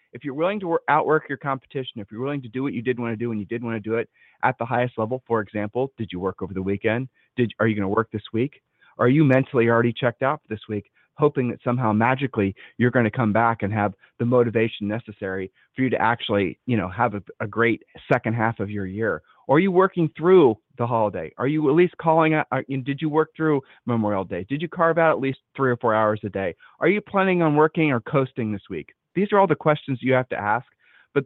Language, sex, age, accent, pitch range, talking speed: English, male, 30-49, American, 110-155 Hz, 260 wpm